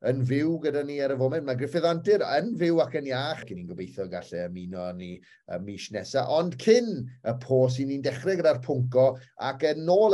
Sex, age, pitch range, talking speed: male, 30-49, 115-150 Hz, 225 wpm